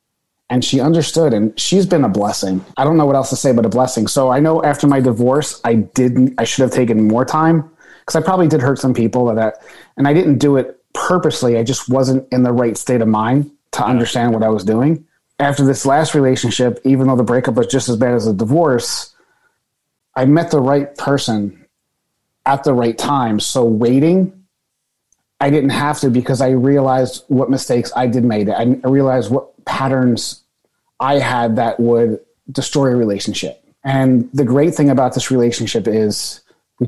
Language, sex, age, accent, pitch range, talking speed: English, male, 30-49, American, 120-145 Hz, 195 wpm